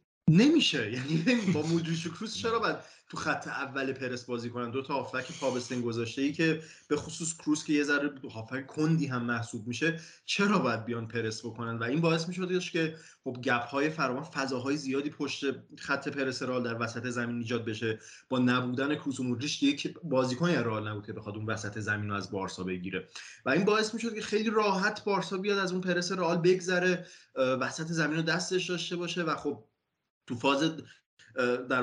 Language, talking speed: English, 180 wpm